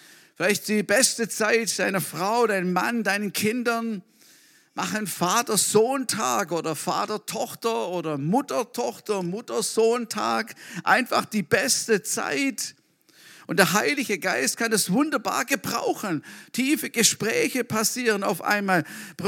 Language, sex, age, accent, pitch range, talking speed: German, male, 50-69, German, 155-225 Hz, 105 wpm